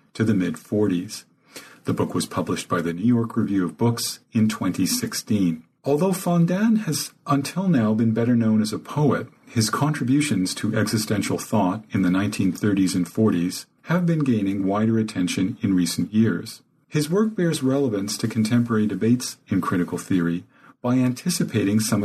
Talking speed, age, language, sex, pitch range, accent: 160 wpm, 40-59, English, male, 95-130 Hz, American